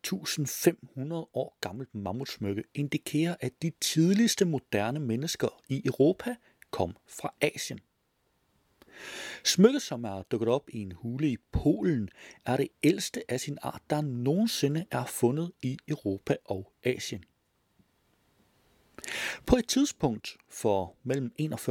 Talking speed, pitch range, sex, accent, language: 120 wpm, 110-165 Hz, male, native, Danish